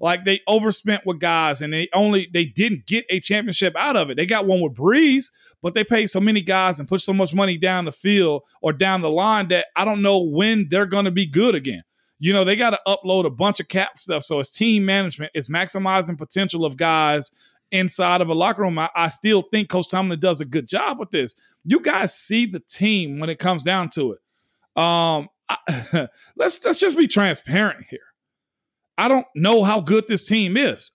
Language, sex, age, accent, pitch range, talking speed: English, male, 40-59, American, 175-215 Hz, 220 wpm